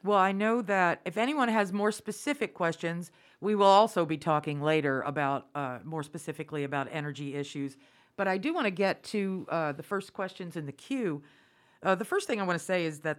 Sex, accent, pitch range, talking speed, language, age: female, American, 165-215 Hz, 215 wpm, English, 50-69